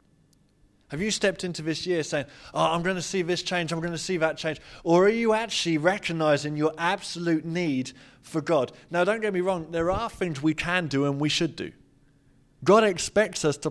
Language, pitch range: English, 150-185 Hz